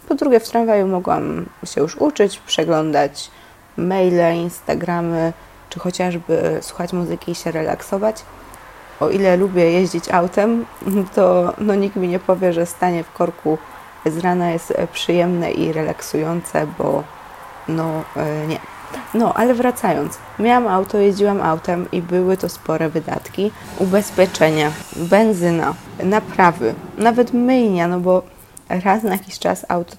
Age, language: 20-39, Polish